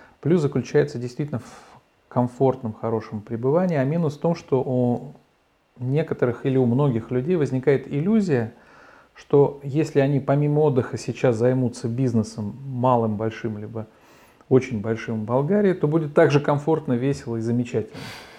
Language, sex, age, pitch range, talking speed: Russian, male, 40-59, 120-145 Hz, 135 wpm